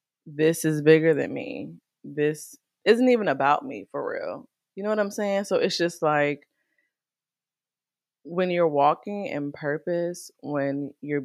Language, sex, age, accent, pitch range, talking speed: English, female, 20-39, American, 145-185 Hz, 150 wpm